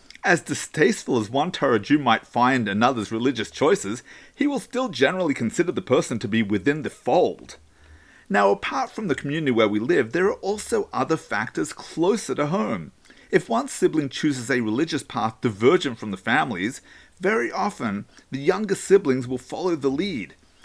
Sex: male